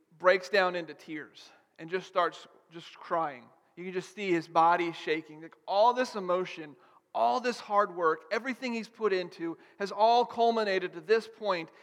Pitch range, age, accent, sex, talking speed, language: 175-225 Hz, 40-59, American, male, 165 wpm, English